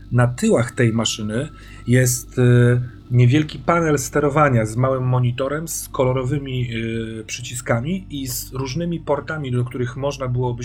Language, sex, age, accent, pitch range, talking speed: Polish, male, 40-59, native, 115-140 Hz, 125 wpm